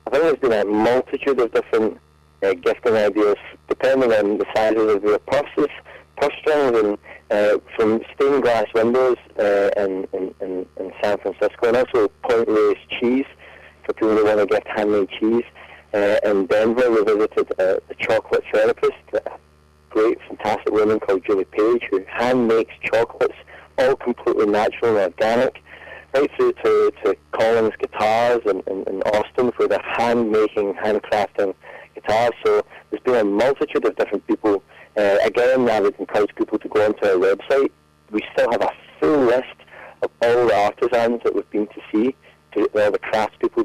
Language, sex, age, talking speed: English, male, 30-49, 160 wpm